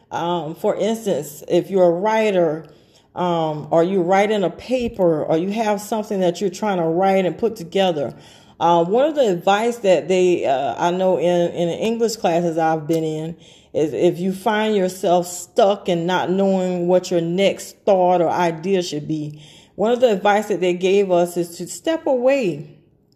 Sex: female